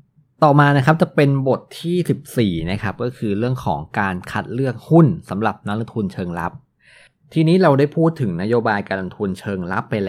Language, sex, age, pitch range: Thai, male, 20-39, 100-130 Hz